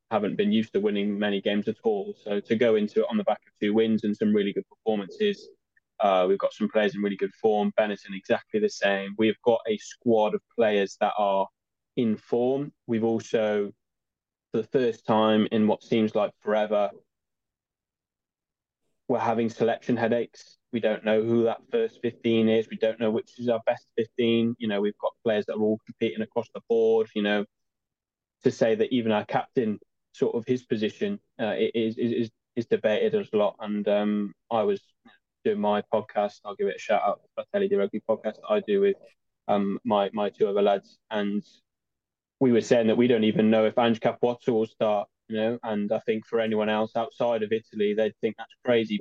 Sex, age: male, 10-29